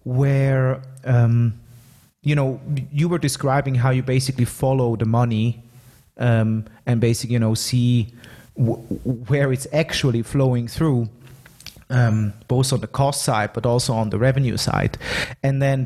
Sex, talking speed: male, 145 wpm